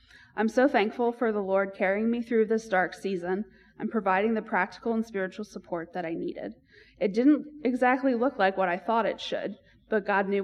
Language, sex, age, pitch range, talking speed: English, female, 20-39, 190-235 Hz, 200 wpm